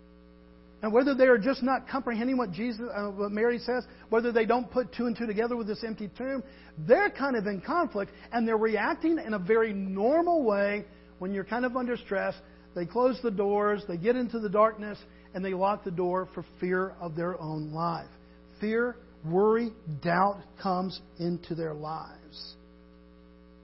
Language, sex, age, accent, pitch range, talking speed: English, male, 50-69, American, 150-230 Hz, 185 wpm